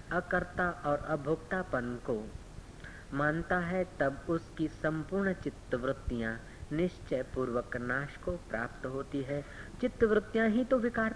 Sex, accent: female, native